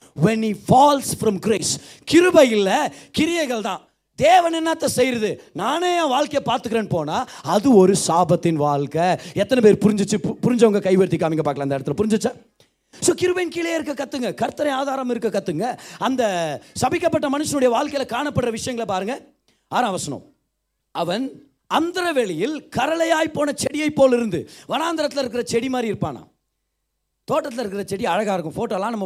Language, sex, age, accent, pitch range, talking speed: Tamil, male, 30-49, native, 200-300 Hz, 205 wpm